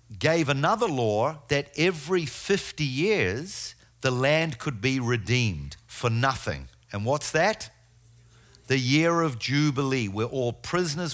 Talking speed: 130 wpm